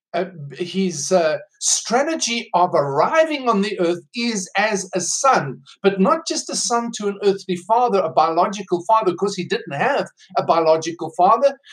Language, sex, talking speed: English, male, 165 wpm